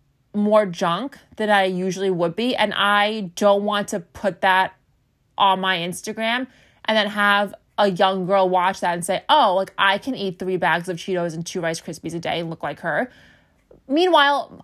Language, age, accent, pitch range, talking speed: English, 20-39, American, 175-210 Hz, 195 wpm